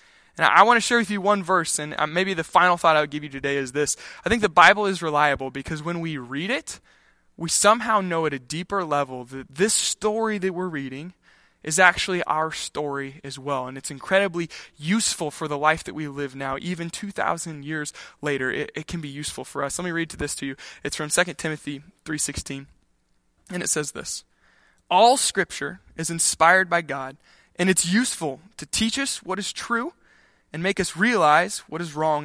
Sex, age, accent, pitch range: male, 20-39, American, 145-190 Hz